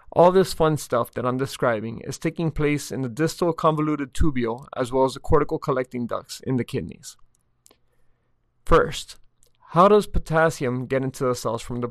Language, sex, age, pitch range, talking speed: English, male, 30-49, 125-150 Hz, 175 wpm